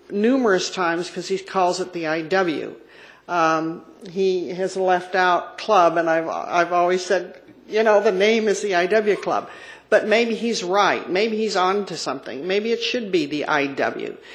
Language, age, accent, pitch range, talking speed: English, 50-69, American, 175-220 Hz, 175 wpm